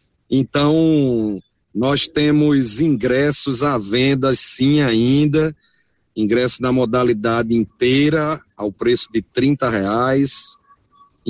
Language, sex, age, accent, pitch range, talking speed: Portuguese, male, 40-59, Brazilian, 115-145 Hz, 90 wpm